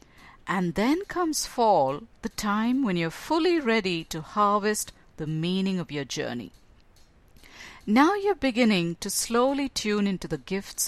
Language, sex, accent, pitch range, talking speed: English, female, Indian, 170-245 Hz, 145 wpm